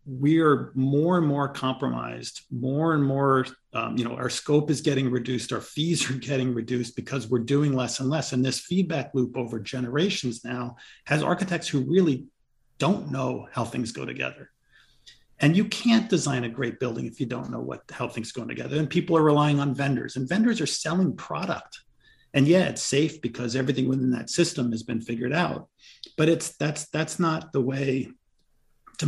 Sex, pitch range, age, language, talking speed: male, 125-145 Hz, 40-59, English, 190 wpm